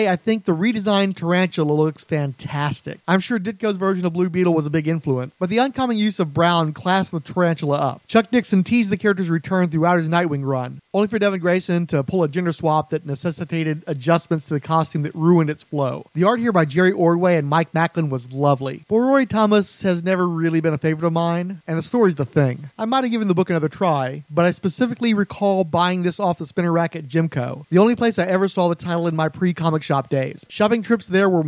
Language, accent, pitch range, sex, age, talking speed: English, American, 160-195 Hz, male, 40-59, 230 wpm